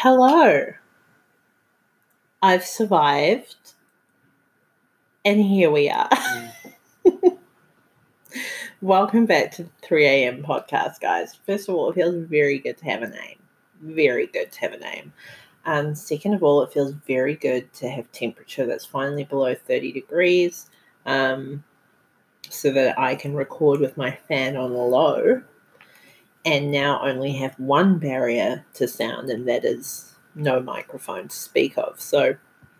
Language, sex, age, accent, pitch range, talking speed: English, female, 30-49, Australian, 140-230 Hz, 135 wpm